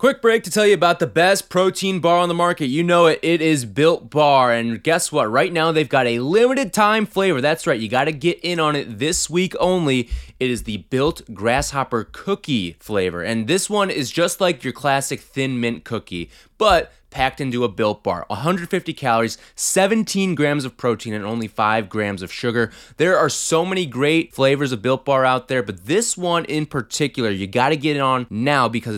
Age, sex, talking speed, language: 20-39, male, 210 wpm, English